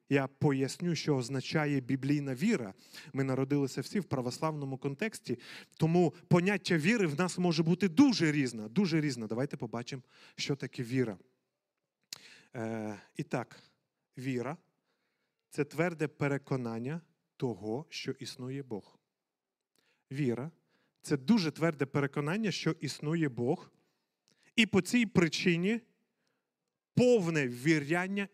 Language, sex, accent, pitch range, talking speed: Ukrainian, male, native, 130-180 Hz, 110 wpm